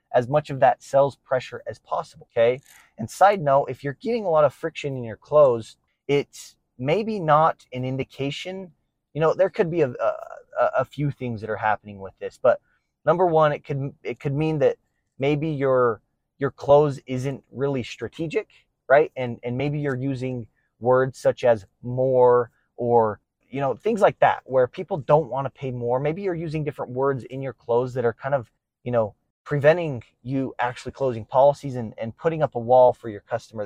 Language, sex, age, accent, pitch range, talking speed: English, male, 20-39, American, 120-155 Hz, 195 wpm